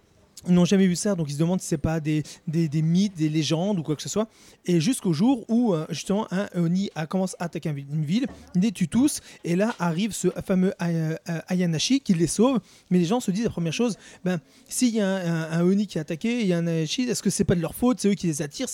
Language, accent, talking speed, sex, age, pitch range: French, French, 270 wpm, male, 30-49, 165-220 Hz